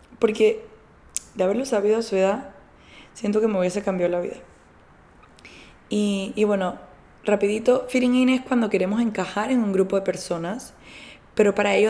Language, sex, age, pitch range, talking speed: Spanish, female, 20-39, 185-215 Hz, 160 wpm